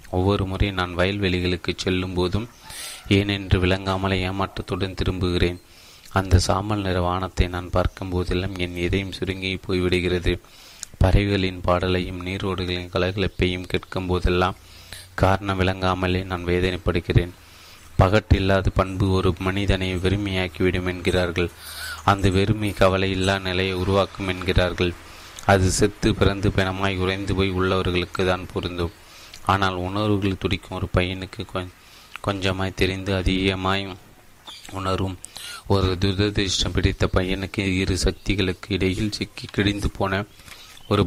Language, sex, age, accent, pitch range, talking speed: Tamil, male, 30-49, native, 90-100 Hz, 100 wpm